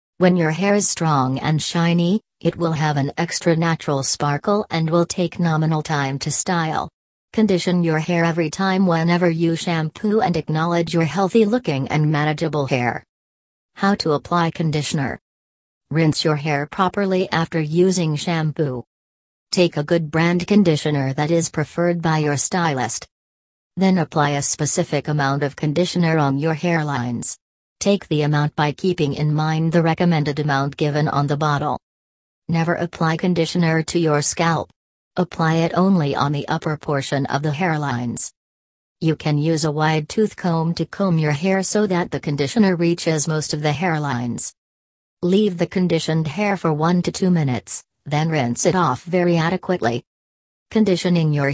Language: English